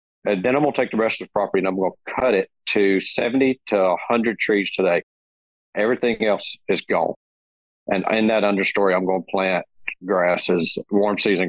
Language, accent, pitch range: English, American, 95-115 Hz